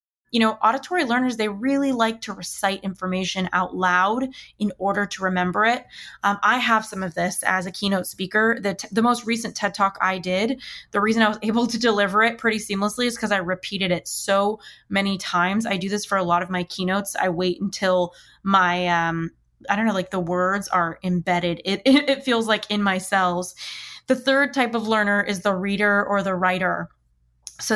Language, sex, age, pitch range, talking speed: English, female, 20-39, 185-225 Hz, 205 wpm